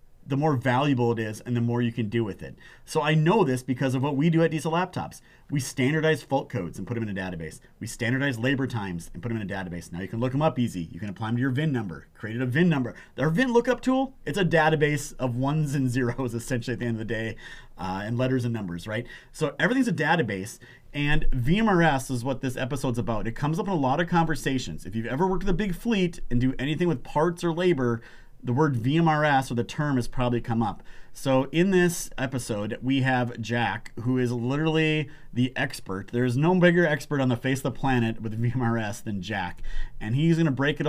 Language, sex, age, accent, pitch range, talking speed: English, male, 30-49, American, 115-150 Hz, 240 wpm